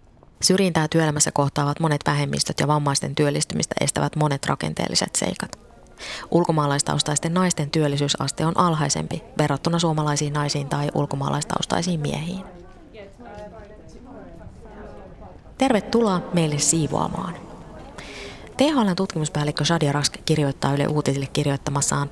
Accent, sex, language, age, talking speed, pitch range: native, female, Finnish, 20-39, 90 wpm, 145-165 Hz